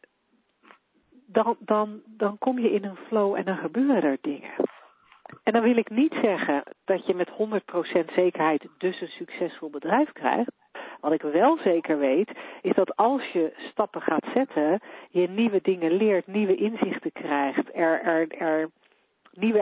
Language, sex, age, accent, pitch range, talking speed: Dutch, female, 40-59, Dutch, 175-255 Hz, 160 wpm